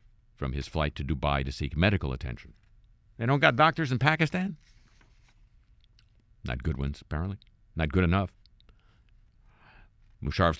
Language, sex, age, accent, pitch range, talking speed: English, male, 50-69, American, 80-110 Hz, 130 wpm